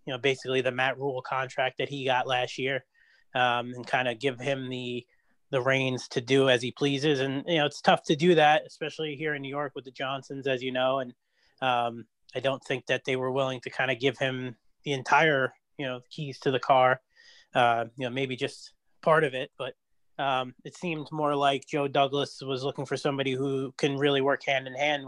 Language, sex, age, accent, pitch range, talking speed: English, male, 30-49, American, 125-145 Hz, 225 wpm